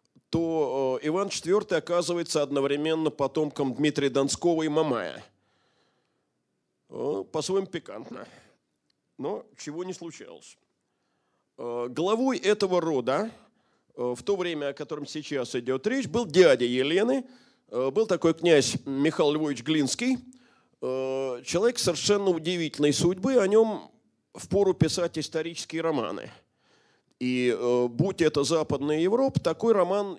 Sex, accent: male, native